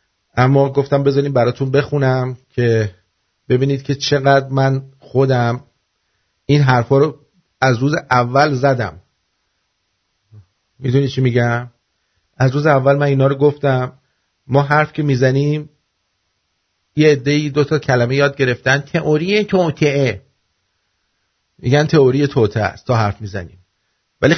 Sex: male